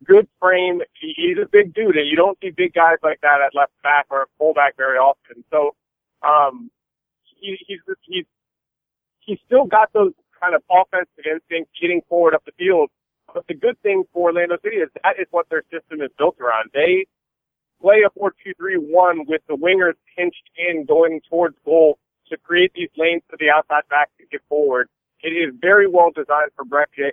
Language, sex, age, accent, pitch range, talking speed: English, male, 40-59, American, 150-210 Hz, 190 wpm